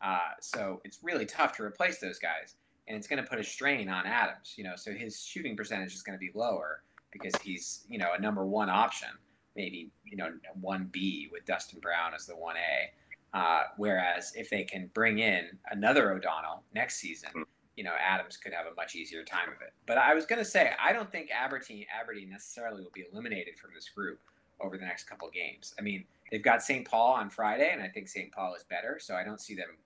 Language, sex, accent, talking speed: English, male, American, 230 wpm